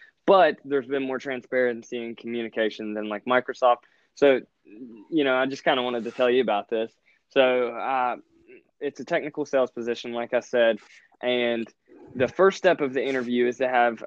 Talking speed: 185 wpm